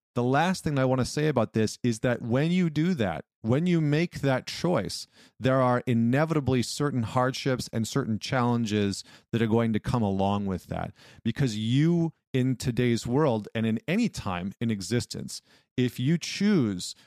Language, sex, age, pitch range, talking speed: English, male, 40-59, 105-130 Hz, 175 wpm